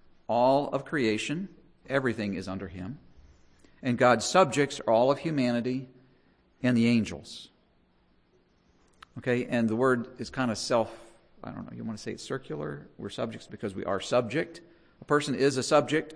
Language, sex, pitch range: English, male, 105-135 Hz